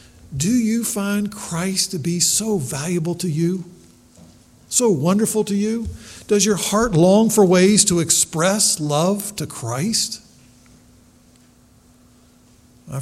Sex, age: male, 50-69